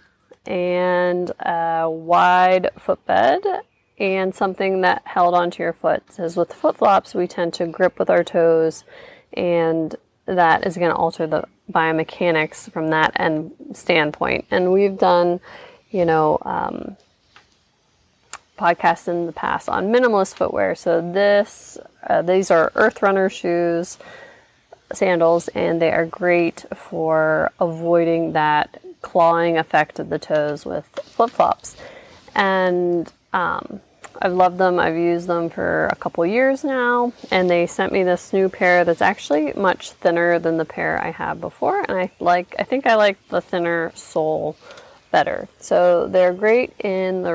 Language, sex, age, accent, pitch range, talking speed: English, female, 30-49, American, 165-190 Hz, 145 wpm